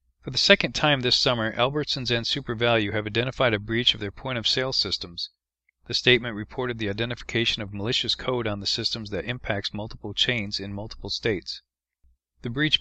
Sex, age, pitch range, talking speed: male, 40-59, 105-120 Hz, 175 wpm